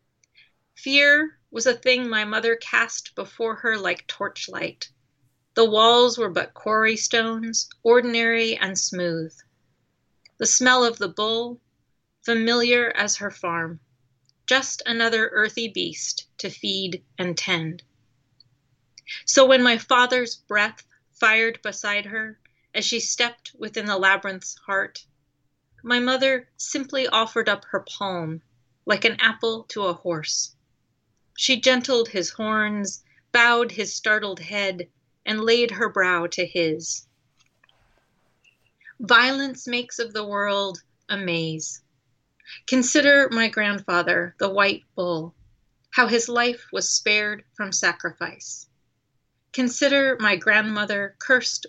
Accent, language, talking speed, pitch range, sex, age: American, English, 120 wpm, 165-235 Hz, female, 30-49